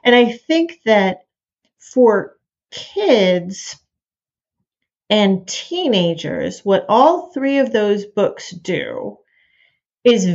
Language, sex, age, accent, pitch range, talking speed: English, female, 40-59, American, 190-250 Hz, 95 wpm